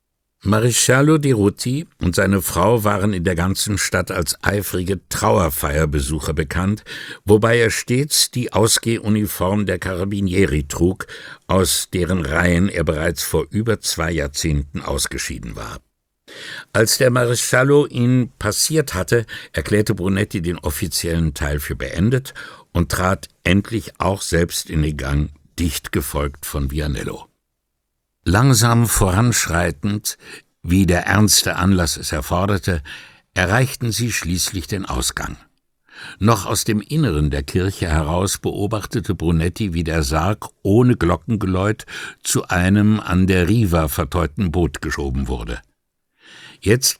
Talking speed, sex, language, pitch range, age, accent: 125 wpm, male, English, 80-110 Hz, 60-79, German